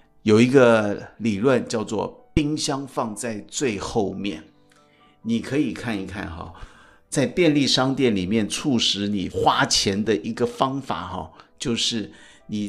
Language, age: Chinese, 50-69